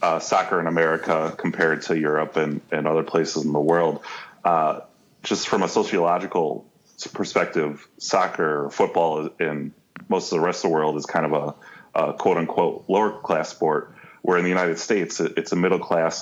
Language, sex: English, male